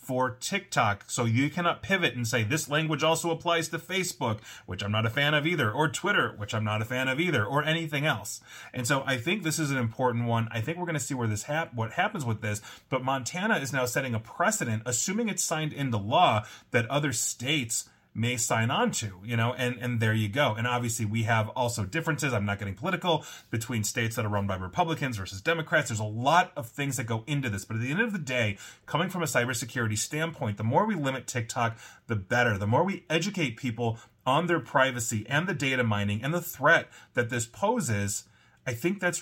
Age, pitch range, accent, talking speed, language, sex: 30-49, 110-155 Hz, American, 230 wpm, English, male